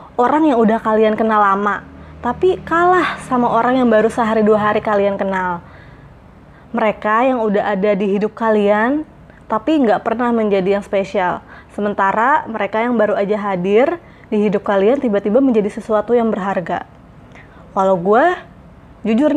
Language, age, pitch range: Indonesian, 20-39, 200-235 Hz